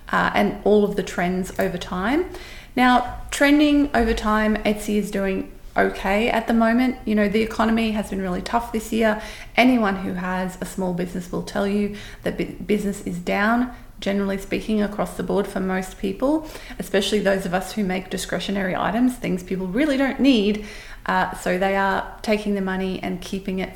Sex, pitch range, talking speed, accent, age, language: female, 185-230 Hz, 185 wpm, Australian, 30-49, English